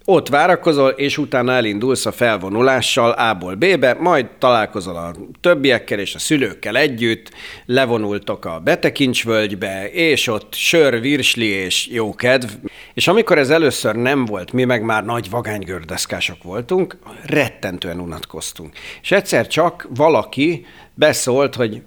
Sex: male